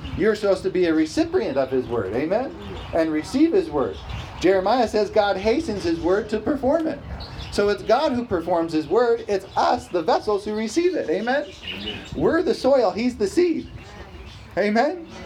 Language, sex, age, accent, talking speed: English, male, 40-59, American, 175 wpm